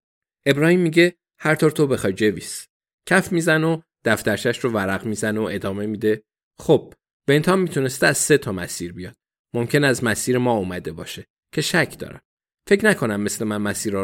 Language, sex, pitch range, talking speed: Persian, male, 110-145 Hz, 165 wpm